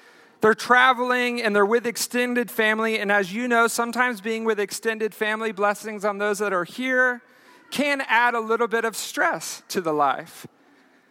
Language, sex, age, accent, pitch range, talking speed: English, male, 40-59, American, 205-245 Hz, 175 wpm